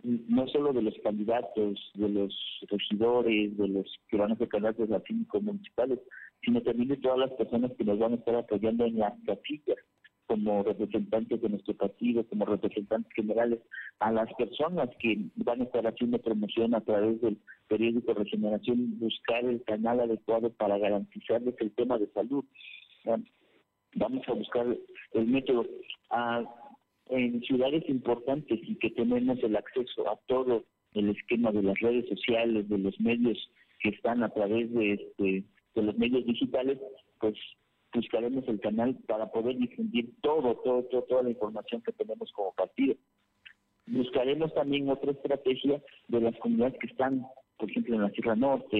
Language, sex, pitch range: Spanish, male, 110-130 Hz